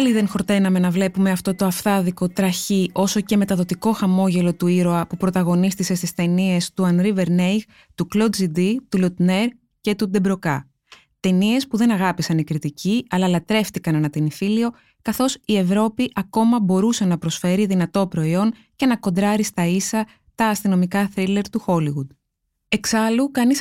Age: 20-39